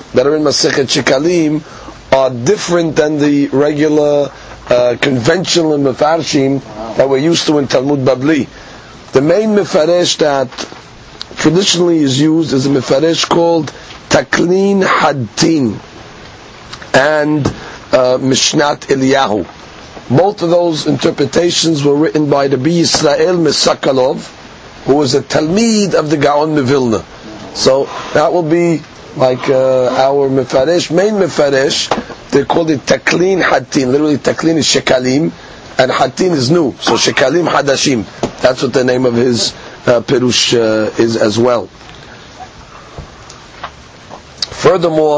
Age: 50-69